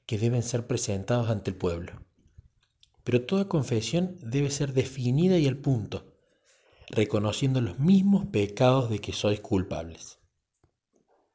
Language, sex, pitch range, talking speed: Spanish, male, 100-135 Hz, 125 wpm